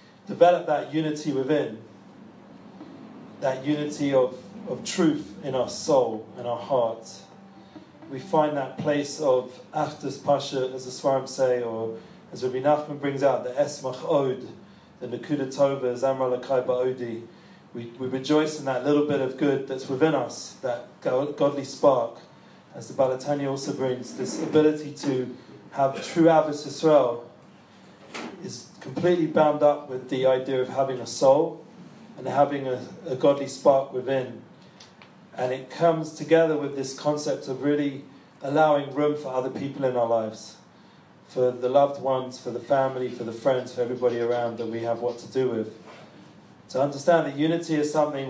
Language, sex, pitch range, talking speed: English, male, 130-150 Hz, 160 wpm